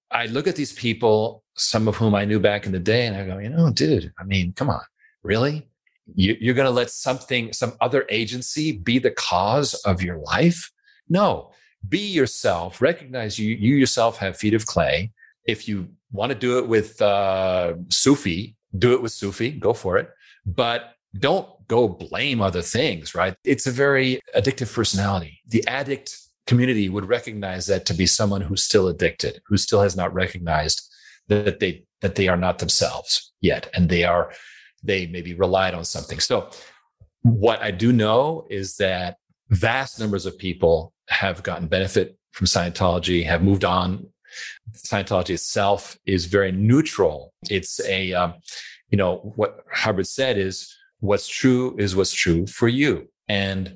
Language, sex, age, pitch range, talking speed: English, male, 40-59, 95-125 Hz, 170 wpm